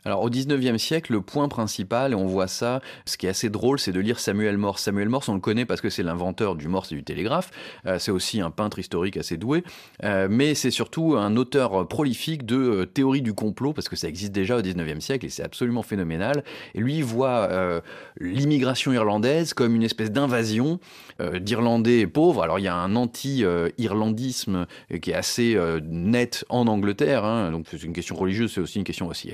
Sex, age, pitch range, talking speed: male, 30-49, 100-135 Hz, 200 wpm